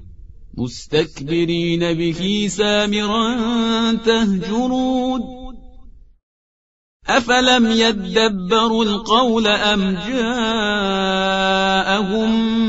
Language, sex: Persian, male